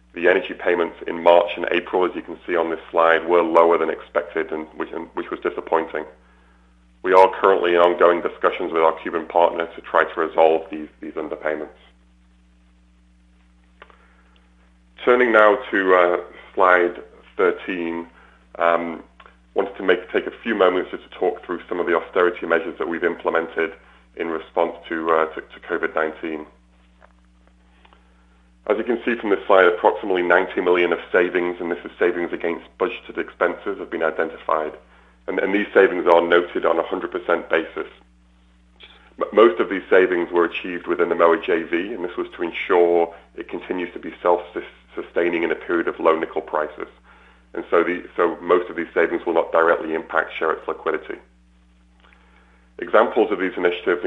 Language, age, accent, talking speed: English, 30-49, British, 170 wpm